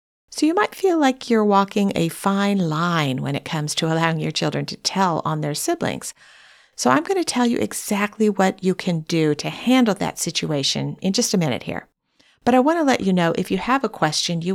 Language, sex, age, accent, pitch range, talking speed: English, female, 50-69, American, 160-230 Hz, 225 wpm